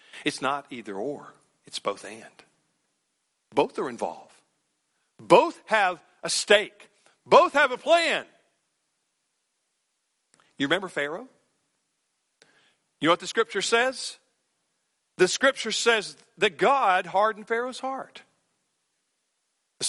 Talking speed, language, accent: 110 wpm, English, American